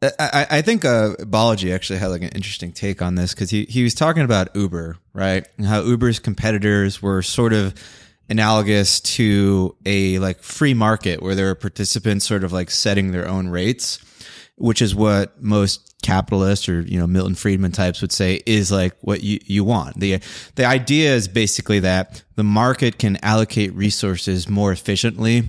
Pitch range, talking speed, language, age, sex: 95-120 Hz, 180 wpm, English, 20-39, male